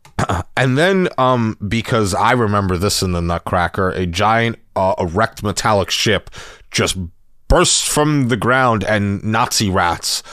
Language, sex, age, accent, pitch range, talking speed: English, male, 30-49, American, 95-130 Hz, 140 wpm